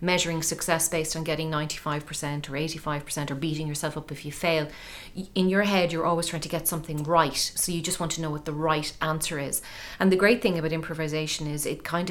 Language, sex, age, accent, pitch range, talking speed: English, female, 30-49, Irish, 155-180 Hz, 225 wpm